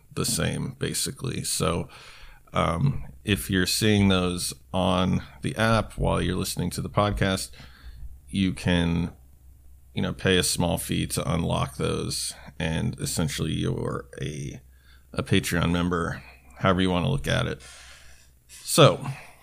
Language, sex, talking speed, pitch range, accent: English, male, 135 wpm, 65-105 Hz, American